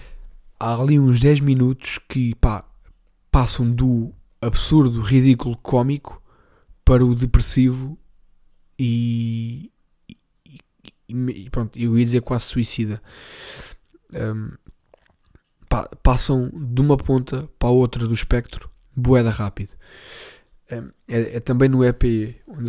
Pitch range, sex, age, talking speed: 115-135 Hz, male, 20-39, 110 wpm